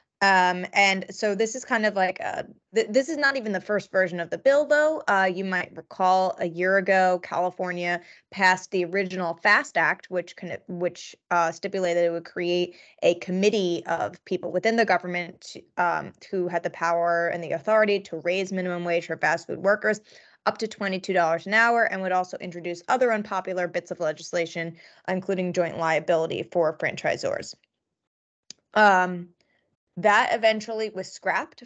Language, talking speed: English, 170 wpm